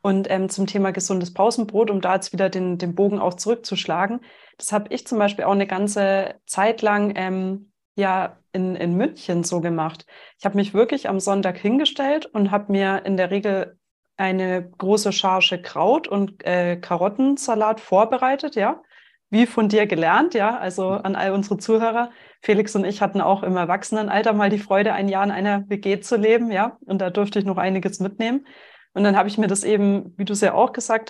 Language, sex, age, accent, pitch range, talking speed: German, female, 30-49, German, 185-215 Hz, 195 wpm